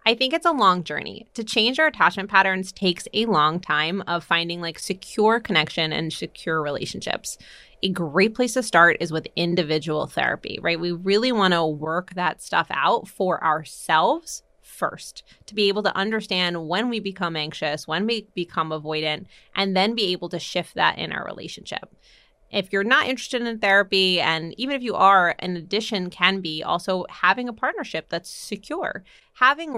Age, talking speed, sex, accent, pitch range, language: 20-39, 180 wpm, female, American, 170-230 Hz, English